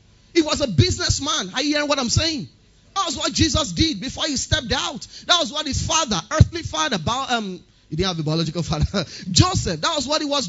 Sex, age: male, 30-49